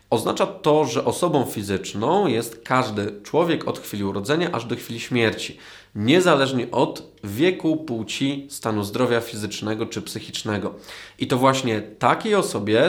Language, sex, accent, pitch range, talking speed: Polish, male, native, 105-130 Hz, 135 wpm